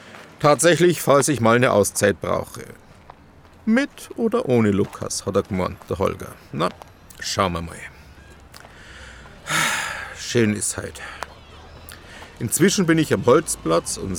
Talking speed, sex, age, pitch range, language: 125 wpm, male, 50-69, 105-170 Hz, German